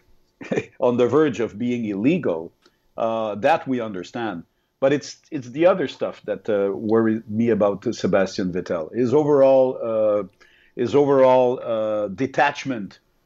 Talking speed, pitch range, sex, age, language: 140 wpm, 110-130 Hz, male, 50-69, English